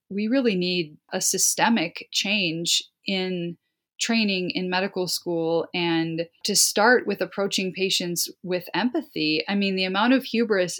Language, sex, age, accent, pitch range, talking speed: English, female, 20-39, American, 180-215 Hz, 140 wpm